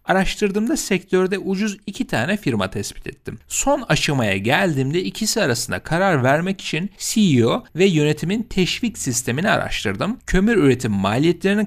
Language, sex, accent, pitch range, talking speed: Turkish, male, native, 125-200 Hz, 130 wpm